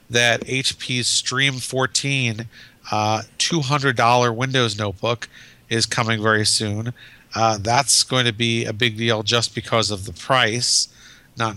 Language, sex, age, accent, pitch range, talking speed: English, male, 40-59, American, 110-125 Hz, 135 wpm